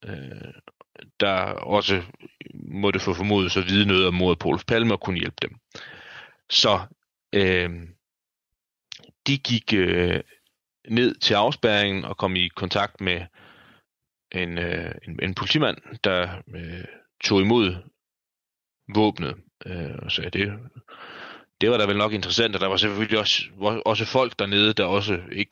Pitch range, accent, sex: 90-110 Hz, native, male